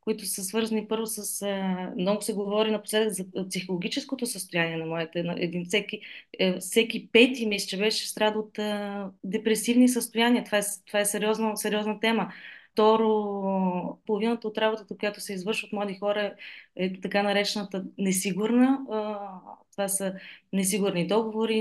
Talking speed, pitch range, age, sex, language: 155 wpm, 195-225 Hz, 20-39, female, Bulgarian